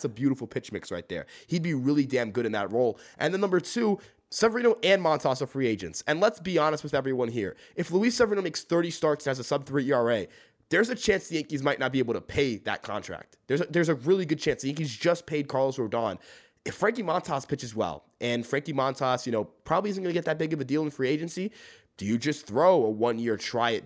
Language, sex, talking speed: English, male, 250 wpm